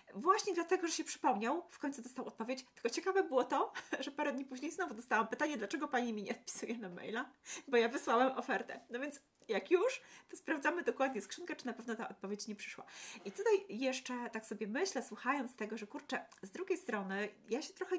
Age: 30-49